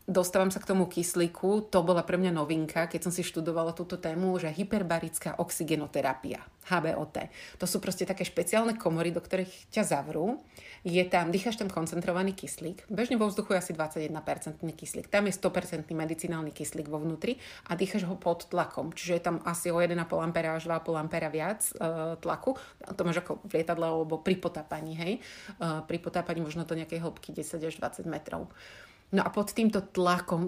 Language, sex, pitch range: Slovak, female, 165-195 Hz